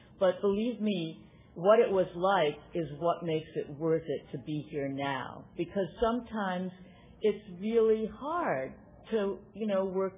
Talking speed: 155 wpm